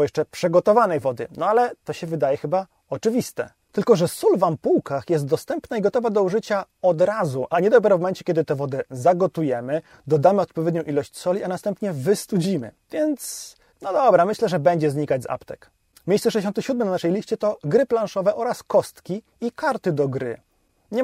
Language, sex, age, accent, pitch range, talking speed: Polish, male, 30-49, native, 160-210 Hz, 180 wpm